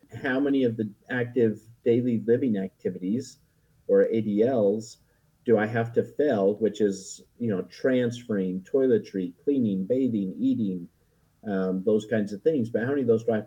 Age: 50-69